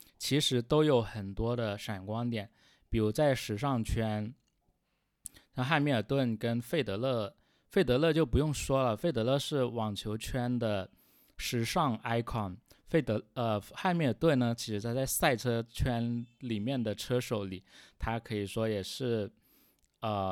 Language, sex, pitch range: Chinese, male, 100-130 Hz